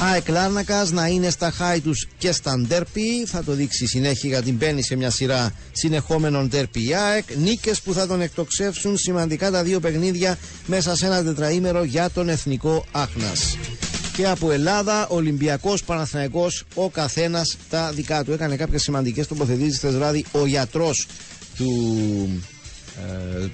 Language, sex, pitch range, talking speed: Greek, male, 130-185 Hz, 145 wpm